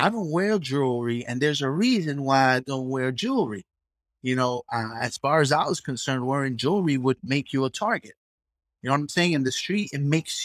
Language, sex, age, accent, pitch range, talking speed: English, male, 30-49, American, 125-180 Hz, 225 wpm